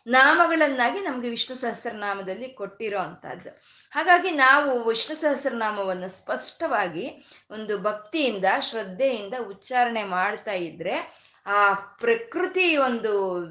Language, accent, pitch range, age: Kannada, native, 210-290 Hz, 20-39